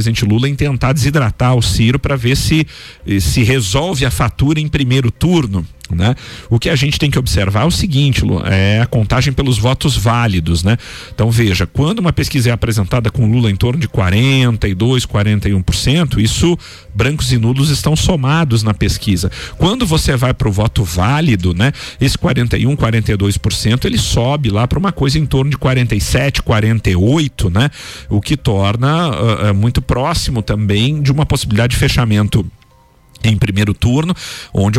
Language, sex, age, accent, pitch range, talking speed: Portuguese, male, 50-69, Brazilian, 105-135 Hz, 165 wpm